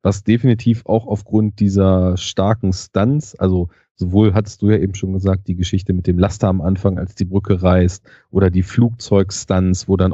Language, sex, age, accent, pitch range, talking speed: German, male, 30-49, German, 95-110 Hz, 185 wpm